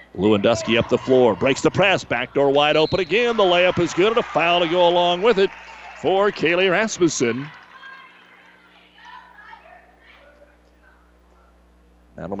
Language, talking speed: English, 135 wpm